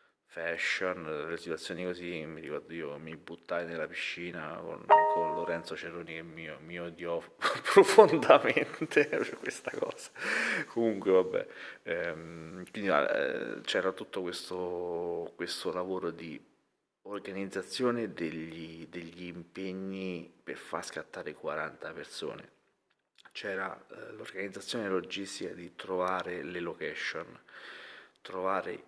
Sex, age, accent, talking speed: male, 30-49, native, 110 wpm